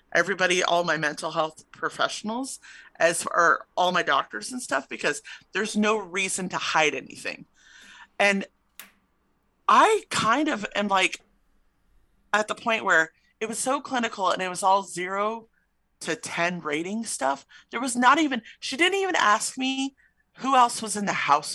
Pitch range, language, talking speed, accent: 170-230 Hz, English, 160 wpm, American